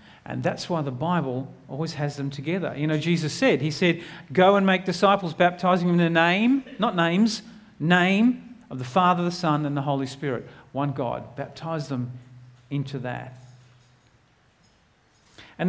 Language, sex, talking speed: English, male, 165 wpm